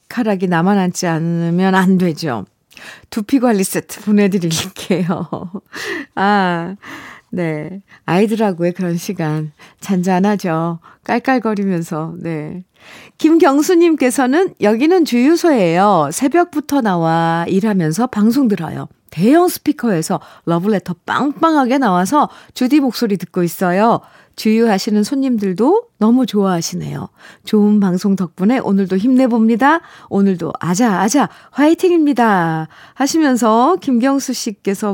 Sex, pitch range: female, 170-245 Hz